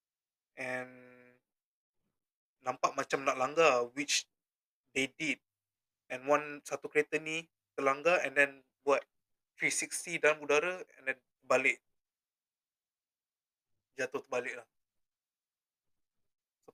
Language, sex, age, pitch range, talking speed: Malay, male, 20-39, 120-145 Hz, 95 wpm